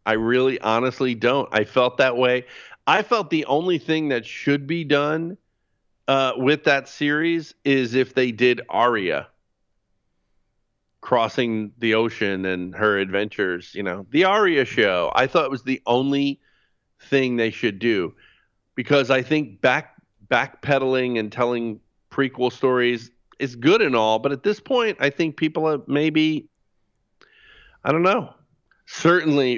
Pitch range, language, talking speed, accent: 110-140 Hz, English, 150 wpm, American